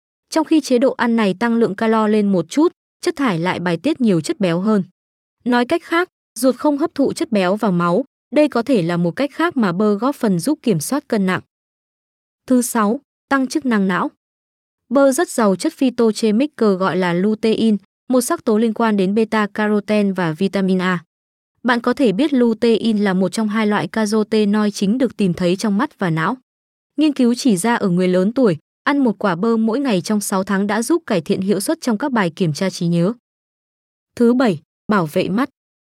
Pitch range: 195-255 Hz